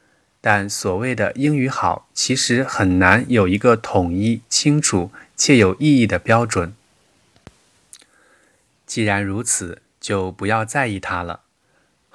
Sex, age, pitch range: male, 20-39, 100-125 Hz